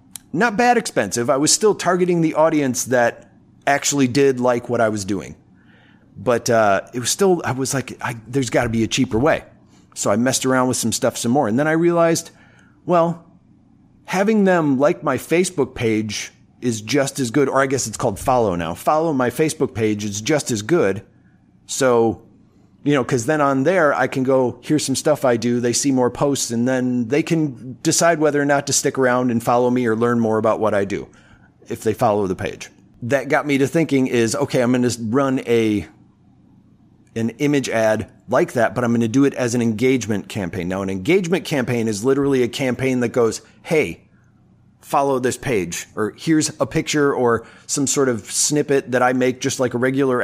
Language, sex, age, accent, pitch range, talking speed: English, male, 30-49, American, 115-145 Hz, 210 wpm